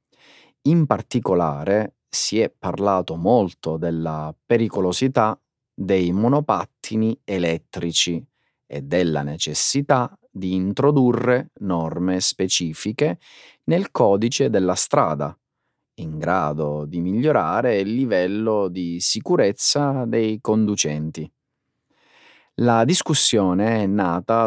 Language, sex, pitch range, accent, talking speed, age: Italian, male, 90-135 Hz, native, 90 wpm, 30-49